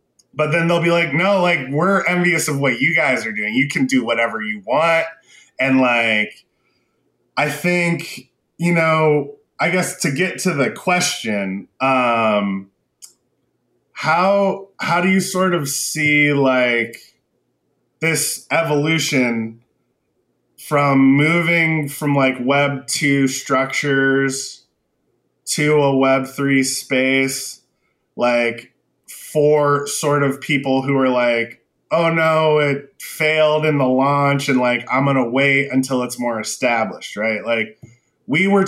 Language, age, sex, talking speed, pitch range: English, 20-39, male, 130 wpm, 130-160 Hz